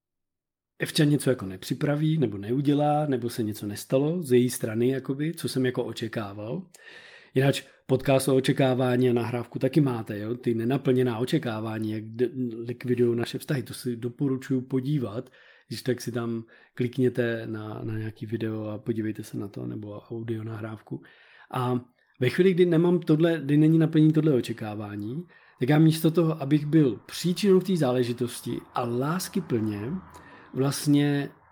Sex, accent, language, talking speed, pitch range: male, native, Czech, 155 wpm, 120-150 Hz